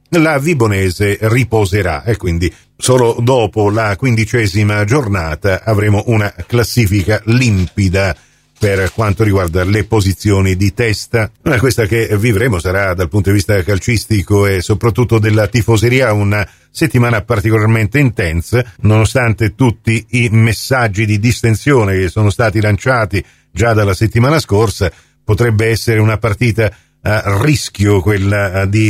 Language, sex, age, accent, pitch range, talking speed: Italian, male, 50-69, native, 100-125 Hz, 125 wpm